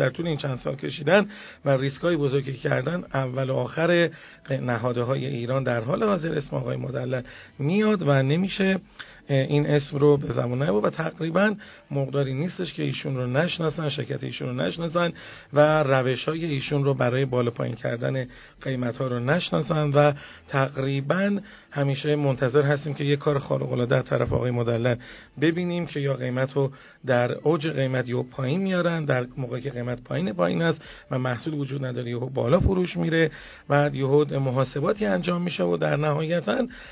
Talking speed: 165 wpm